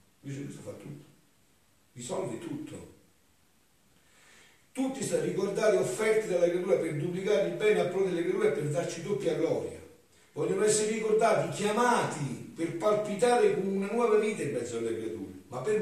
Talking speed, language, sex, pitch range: 155 wpm, Italian, male, 115-180 Hz